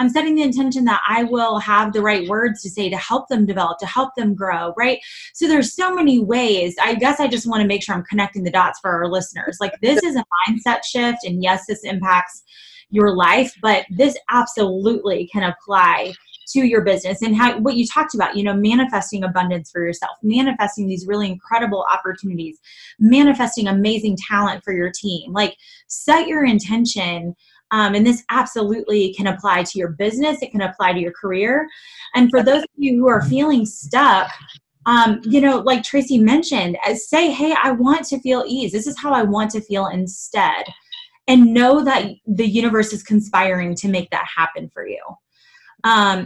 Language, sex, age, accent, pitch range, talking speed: English, female, 20-39, American, 195-260 Hz, 195 wpm